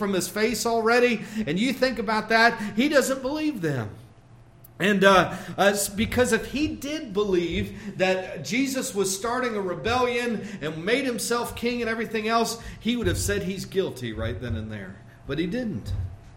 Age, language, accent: 50-69, English, American